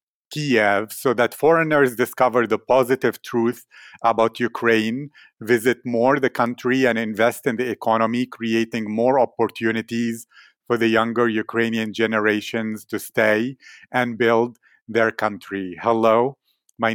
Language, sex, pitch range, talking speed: English, male, 110-125 Hz, 125 wpm